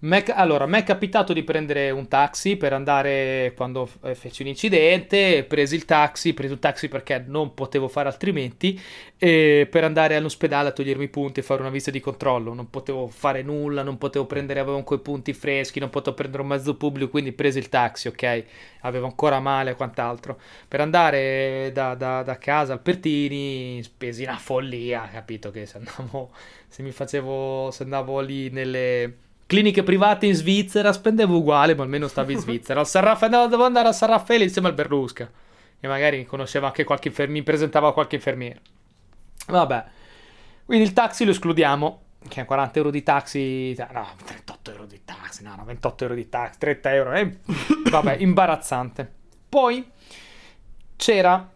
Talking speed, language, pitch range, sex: 175 wpm, Italian, 130-160 Hz, male